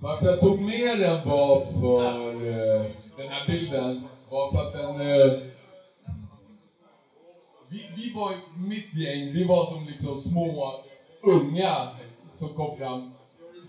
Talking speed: 125 wpm